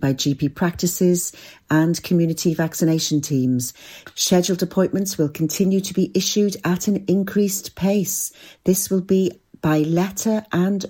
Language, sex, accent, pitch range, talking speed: English, female, British, 140-180 Hz, 130 wpm